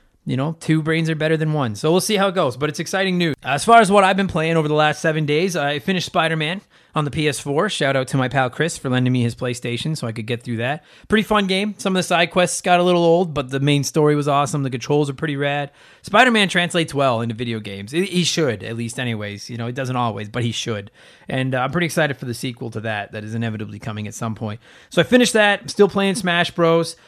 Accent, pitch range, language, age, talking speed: American, 125-165 Hz, English, 30-49, 265 wpm